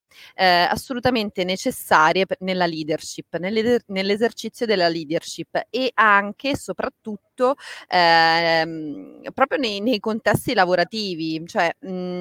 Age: 30-49